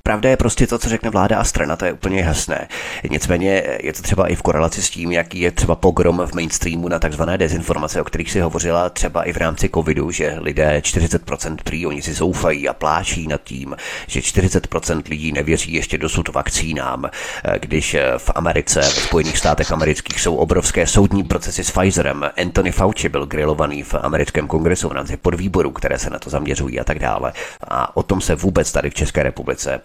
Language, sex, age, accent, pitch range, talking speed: Czech, male, 30-49, native, 80-100 Hz, 200 wpm